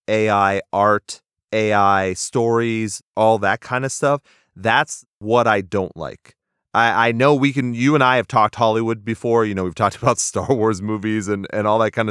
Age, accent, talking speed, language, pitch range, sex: 30-49, American, 195 wpm, English, 105-120 Hz, male